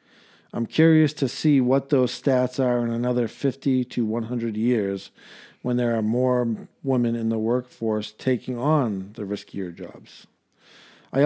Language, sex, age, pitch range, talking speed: English, male, 50-69, 115-135 Hz, 150 wpm